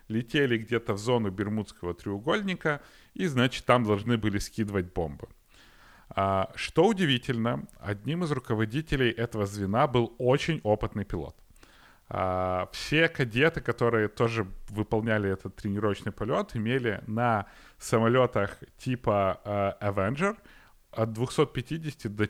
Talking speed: 110 wpm